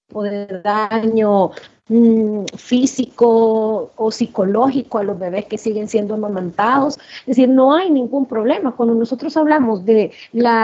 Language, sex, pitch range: Spanish, female, 220-275 Hz